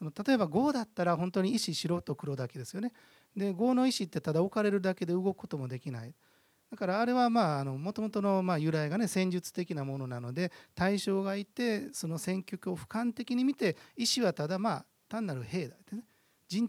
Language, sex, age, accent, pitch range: Japanese, male, 40-59, native, 140-210 Hz